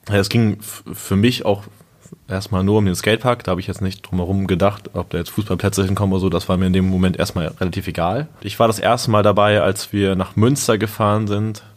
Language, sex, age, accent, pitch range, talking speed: German, male, 20-39, German, 95-105 Hz, 245 wpm